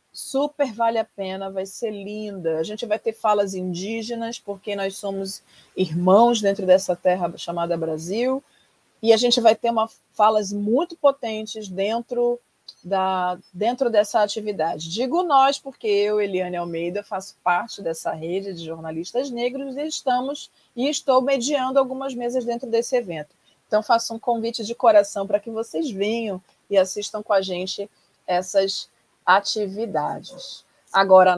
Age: 40-59